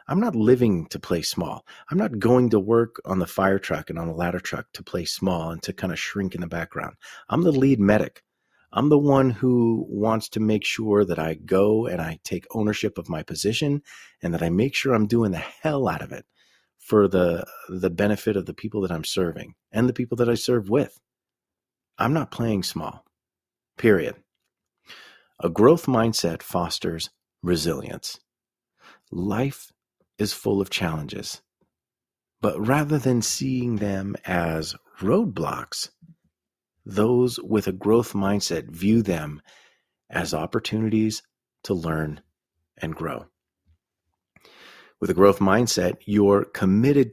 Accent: American